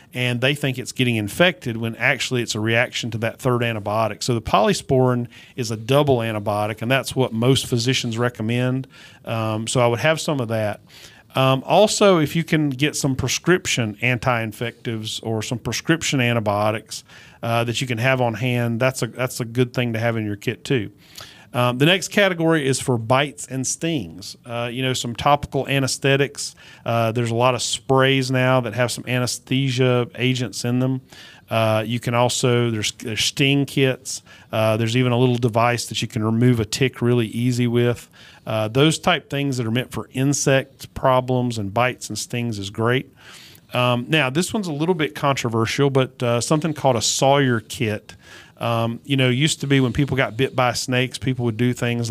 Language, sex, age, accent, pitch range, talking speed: English, male, 40-59, American, 115-135 Hz, 190 wpm